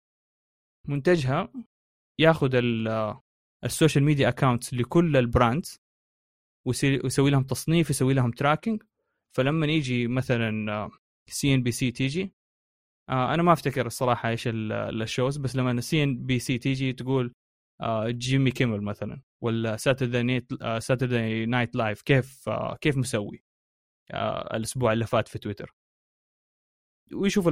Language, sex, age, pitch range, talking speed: Arabic, male, 20-39, 115-140 Hz, 130 wpm